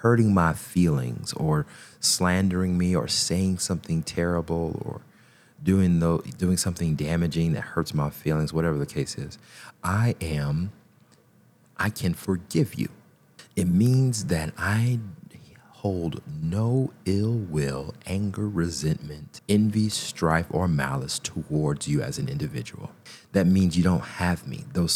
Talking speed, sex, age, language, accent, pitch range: 135 wpm, male, 30-49, English, American, 80-120 Hz